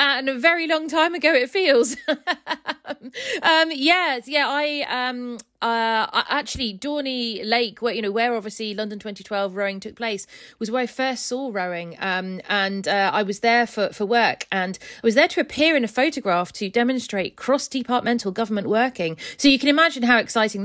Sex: female